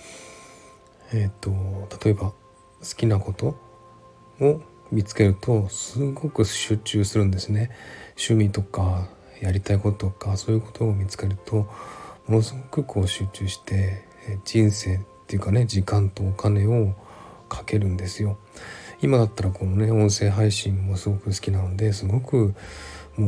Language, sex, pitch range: Japanese, male, 95-110 Hz